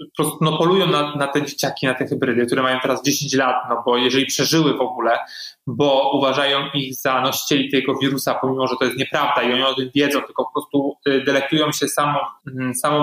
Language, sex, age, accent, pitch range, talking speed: Polish, male, 20-39, native, 135-155 Hz, 210 wpm